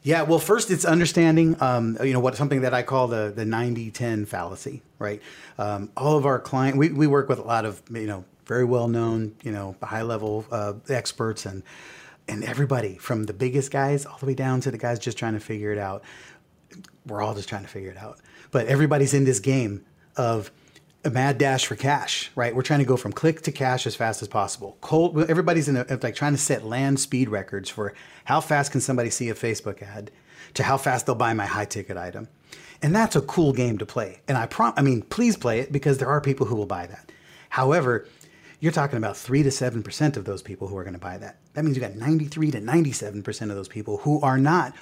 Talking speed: 230 wpm